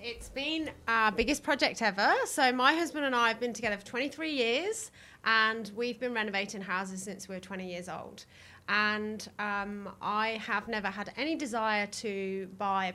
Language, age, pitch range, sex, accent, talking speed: English, 30-49, 195-250 Hz, female, British, 180 wpm